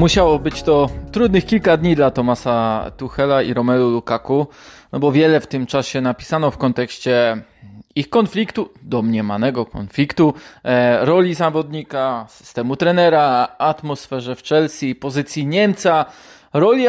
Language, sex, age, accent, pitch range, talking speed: Polish, male, 20-39, native, 130-180 Hz, 125 wpm